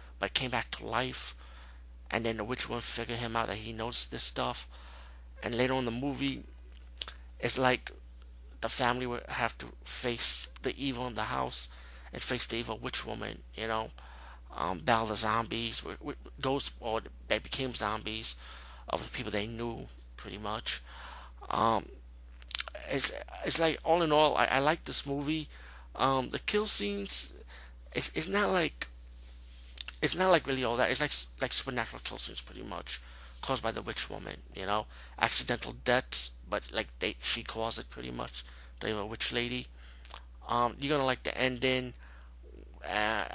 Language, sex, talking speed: English, male, 170 wpm